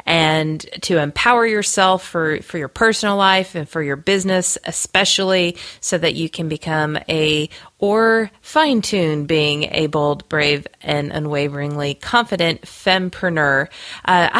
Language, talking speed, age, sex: English, 130 wpm, 30-49, female